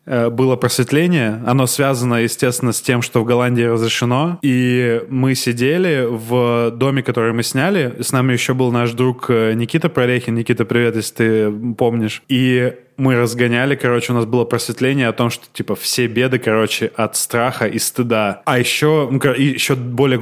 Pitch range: 115-130 Hz